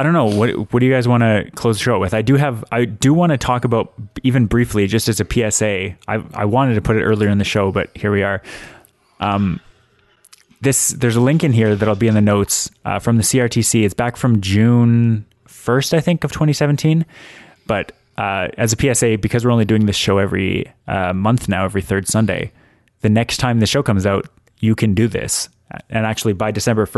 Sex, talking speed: male, 225 wpm